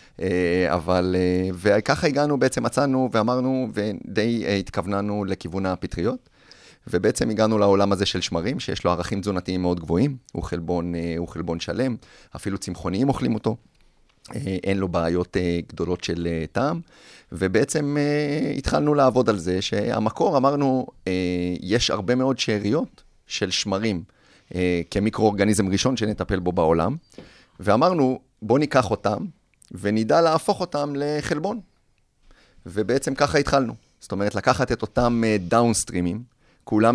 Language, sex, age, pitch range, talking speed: Hebrew, male, 30-49, 90-125 Hz, 115 wpm